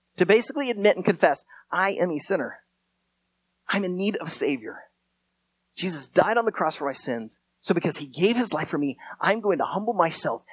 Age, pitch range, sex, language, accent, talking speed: 30-49, 155-235 Hz, male, English, American, 205 wpm